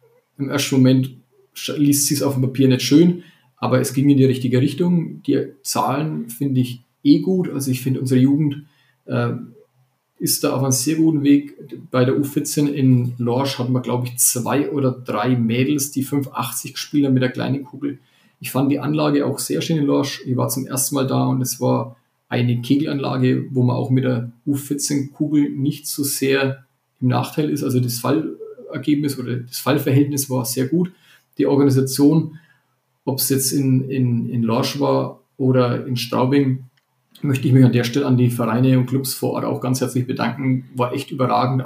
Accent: German